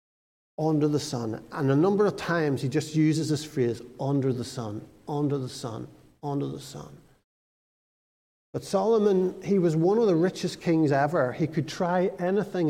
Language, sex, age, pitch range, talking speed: English, male, 50-69, 130-170 Hz, 170 wpm